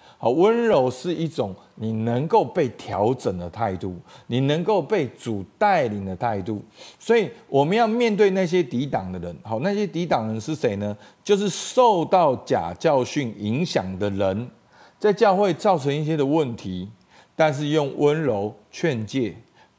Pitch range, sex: 100-160 Hz, male